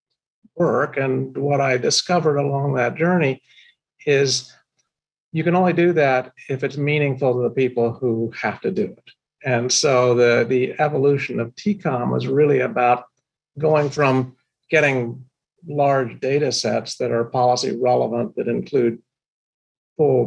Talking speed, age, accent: 140 wpm, 50-69, American